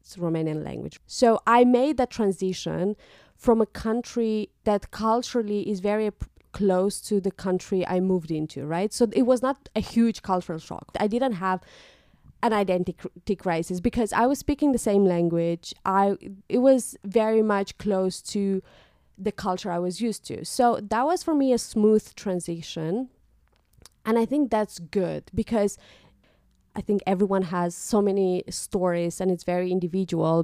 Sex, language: female, English